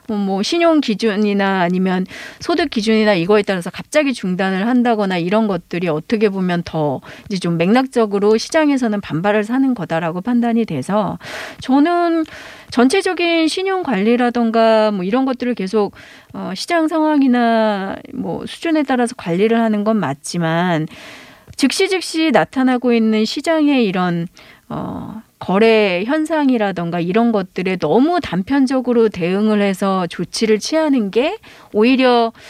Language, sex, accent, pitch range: Korean, female, native, 195-270 Hz